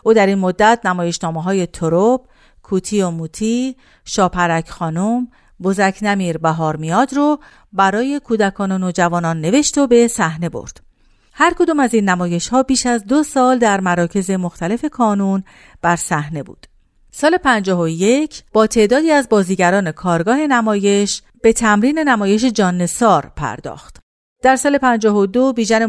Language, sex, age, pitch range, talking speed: Persian, female, 50-69, 180-240 Hz, 145 wpm